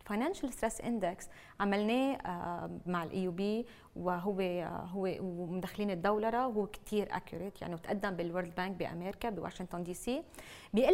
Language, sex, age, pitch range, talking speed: Arabic, female, 20-39, 210-290 Hz, 125 wpm